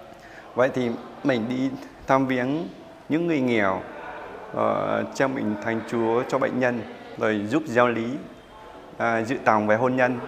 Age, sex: 20-39, male